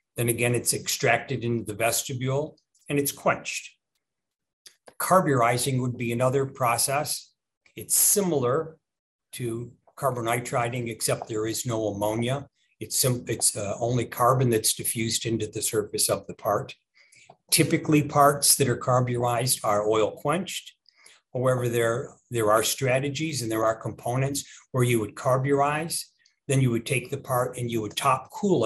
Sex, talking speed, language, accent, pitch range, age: male, 145 wpm, English, American, 120-145 Hz, 60-79